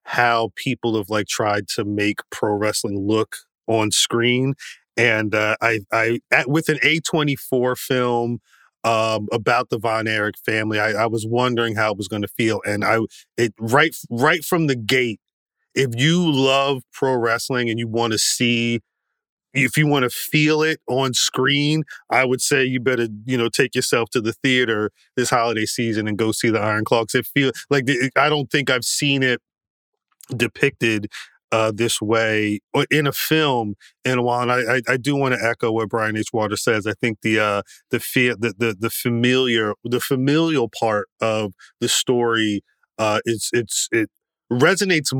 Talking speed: 180 wpm